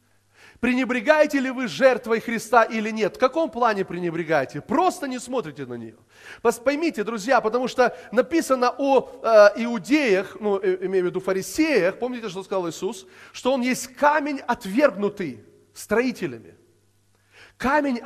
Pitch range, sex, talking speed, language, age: 190-280 Hz, male, 135 wpm, Russian, 30-49